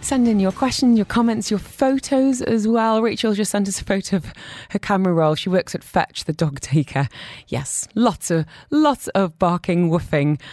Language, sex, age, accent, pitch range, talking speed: English, female, 20-39, British, 145-210 Hz, 195 wpm